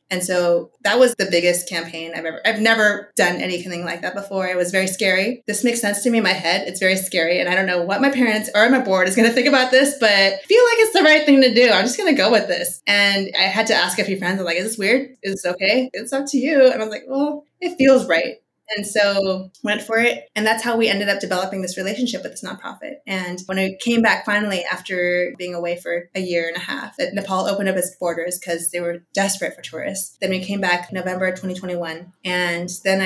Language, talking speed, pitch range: English, 255 wpm, 180-225 Hz